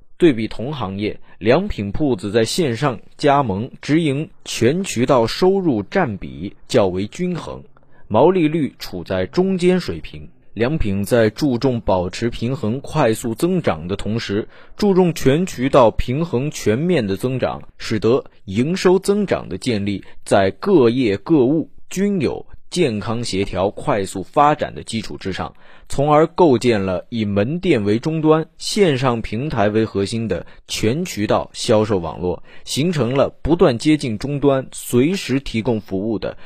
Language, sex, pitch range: Chinese, male, 100-145 Hz